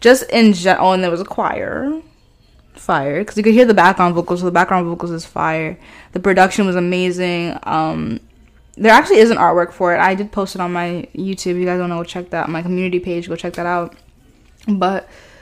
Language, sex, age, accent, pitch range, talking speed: English, female, 10-29, American, 175-205 Hz, 230 wpm